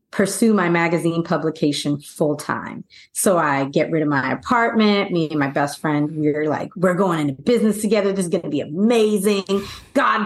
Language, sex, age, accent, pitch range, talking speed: English, female, 30-49, American, 170-235 Hz, 185 wpm